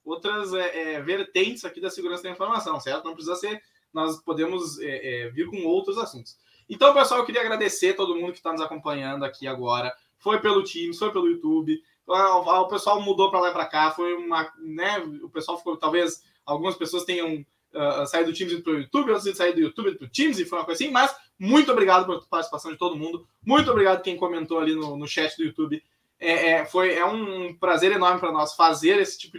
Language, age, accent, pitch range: Portuguese, 20-39, Brazilian, 160-205 Hz